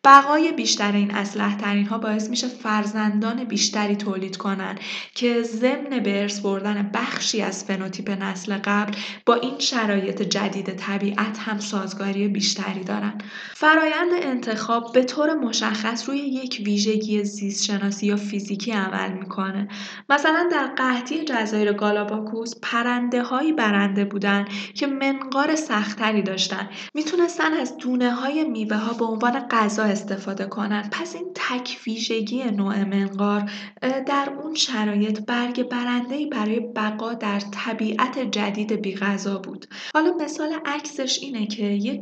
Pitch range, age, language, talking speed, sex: 205-260 Hz, 10-29, Persian, 125 wpm, female